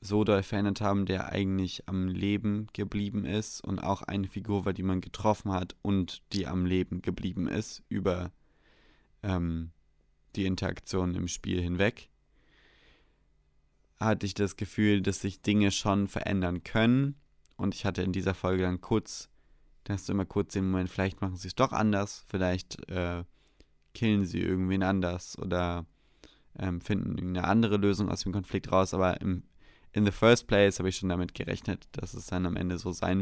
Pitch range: 90-100 Hz